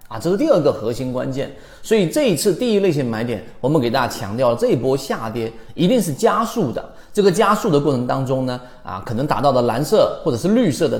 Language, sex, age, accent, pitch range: Chinese, male, 30-49, native, 115-190 Hz